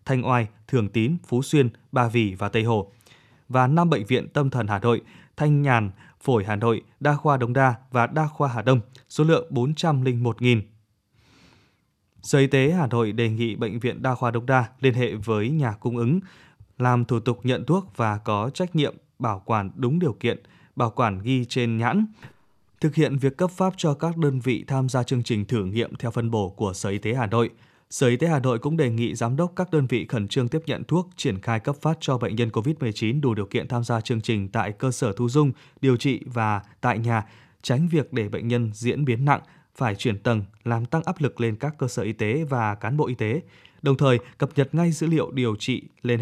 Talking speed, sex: 230 wpm, male